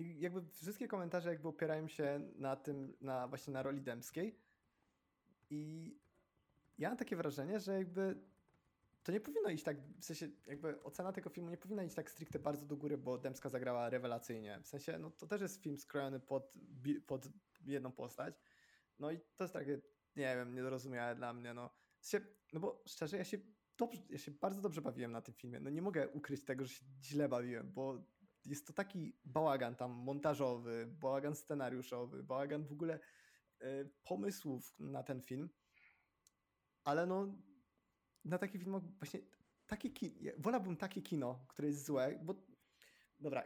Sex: male